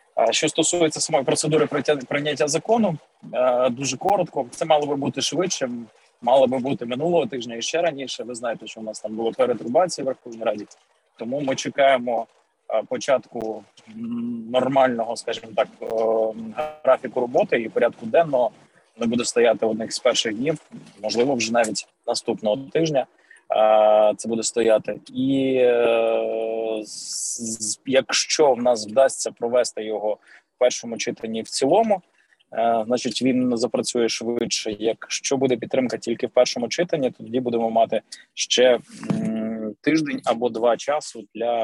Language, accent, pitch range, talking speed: Ukrainian, native, 110-135 Hz, 130 wpm